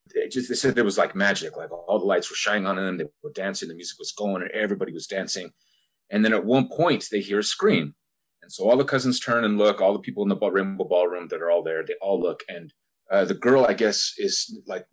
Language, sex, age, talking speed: English, male, 30-49, 270 wpm